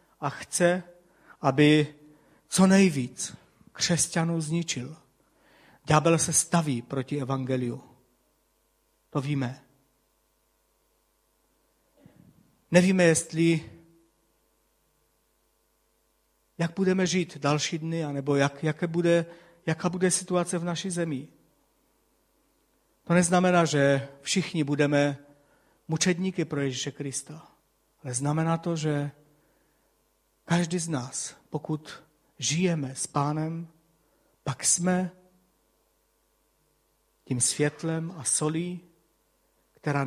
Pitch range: 145-170 Hz